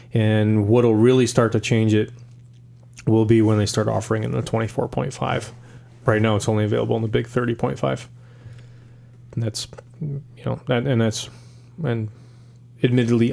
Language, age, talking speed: English, 20-39, 150 wpm